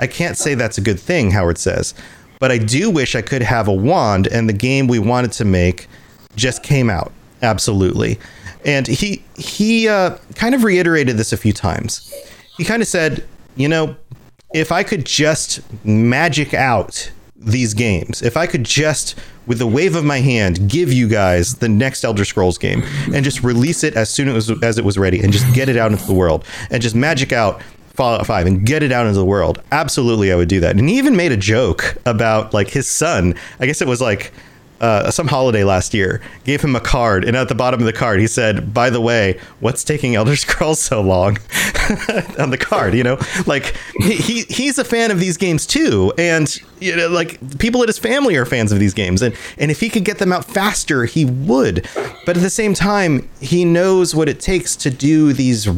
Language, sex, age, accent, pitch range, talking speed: English, male, 40-59, American, 110-155 Hz, 215 wpm